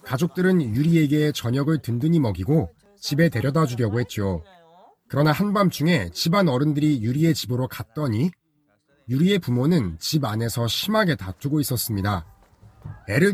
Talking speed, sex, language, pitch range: 110 wpm, male, English, 105-170 Hz